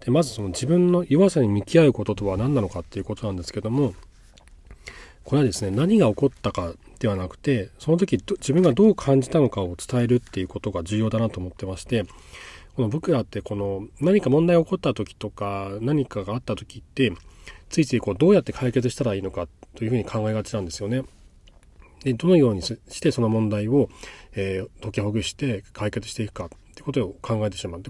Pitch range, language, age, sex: 100-140 Hz, Japanese, 40-59, male